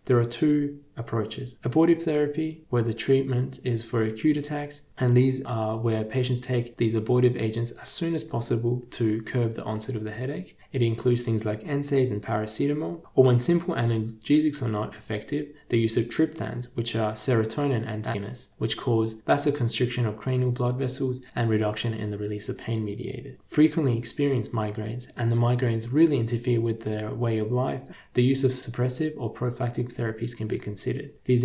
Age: 20-39